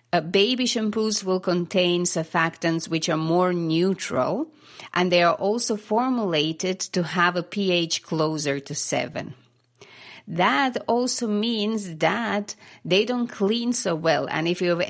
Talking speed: 140 wpm